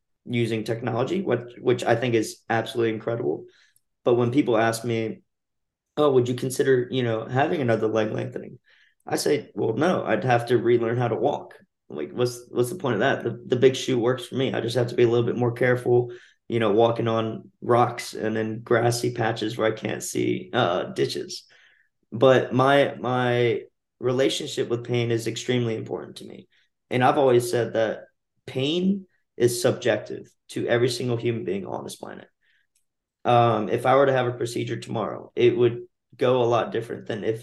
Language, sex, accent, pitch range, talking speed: English, male, American, 115-125 Hz, 190 wpm